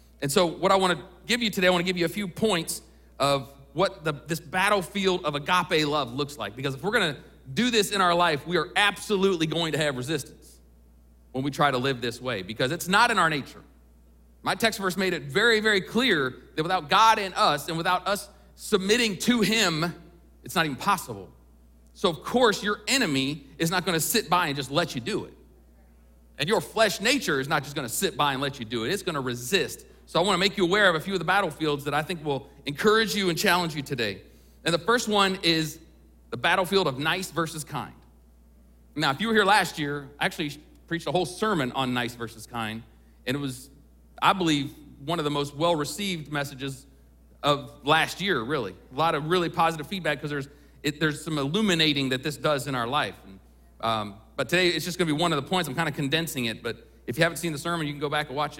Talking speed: 230 wpm